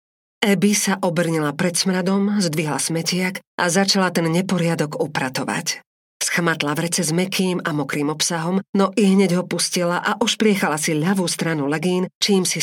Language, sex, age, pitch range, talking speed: Slovak, female, 40-59, 150-185 Hz, 150 wpm